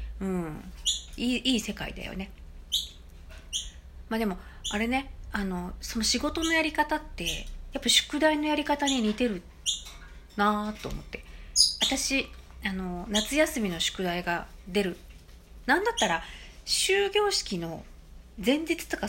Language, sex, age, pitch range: Japanese, female, 40-59, 155-230 Hz